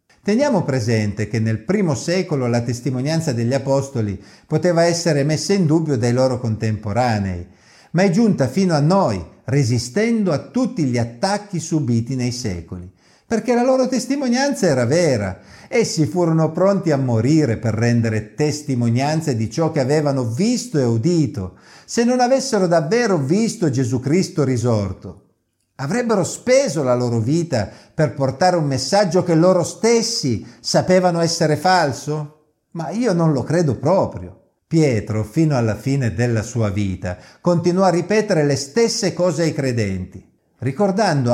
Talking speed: 140 wpm